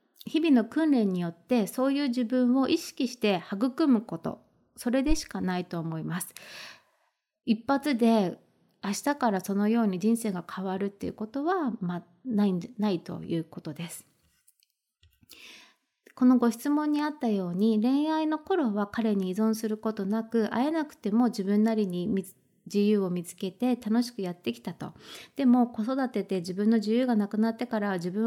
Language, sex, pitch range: Japanese, female, 195-265 Hz